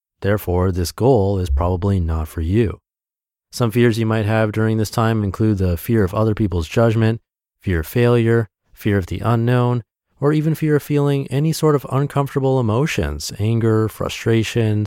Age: 30-49